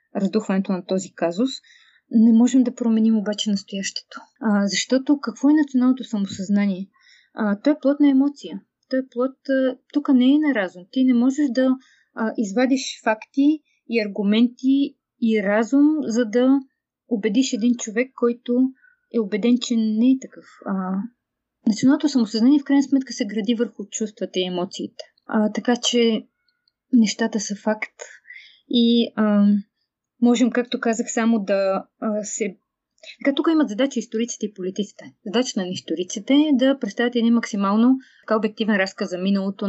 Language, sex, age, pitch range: Bulgarian, female, 20-39, 205-260 Hz